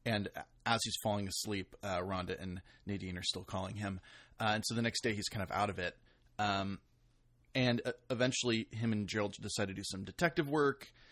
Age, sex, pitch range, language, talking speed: 30-49, male, 100-120 Hz, English, 205 wpm